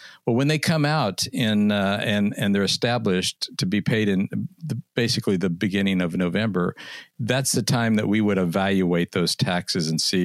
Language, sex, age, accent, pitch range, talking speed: English, male, 60-79, American, 95-115 Hz, 175 wpm